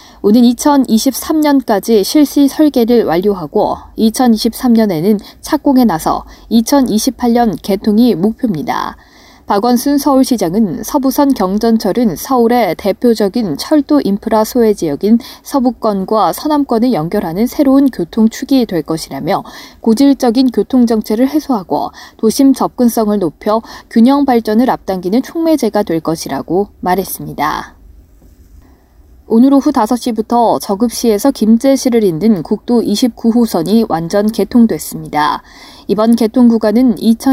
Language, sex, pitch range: Korean, female, 205-260 Hz